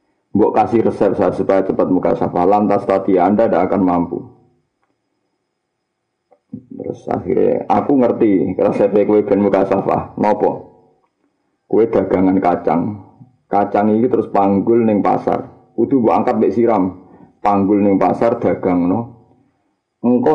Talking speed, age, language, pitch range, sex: 125 wpm, 50-69, Indonesian, 95-125 Hz, male